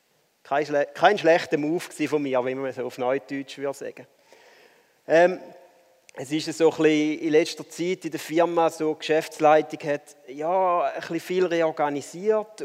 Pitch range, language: 140-175 Hz, German